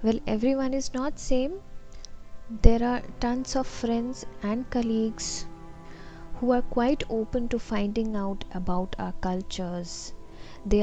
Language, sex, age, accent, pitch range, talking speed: Hindi, female, 20-39, native, 190-235 Hz, 125 wpm